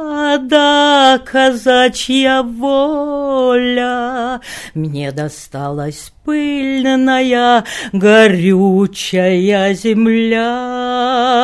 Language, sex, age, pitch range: Russian, female, 40-59, 245-330 Hz